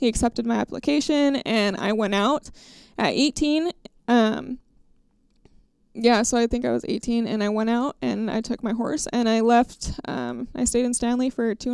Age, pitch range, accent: 20-39, 220-255 Hz, American